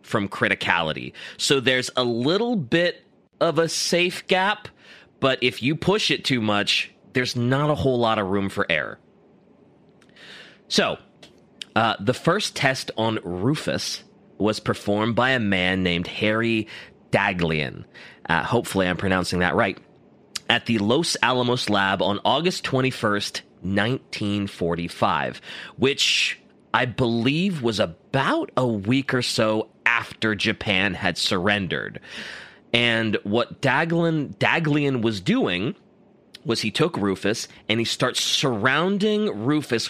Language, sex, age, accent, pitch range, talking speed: English, male, 30-49, American, 105-140 Hz, 130 wpm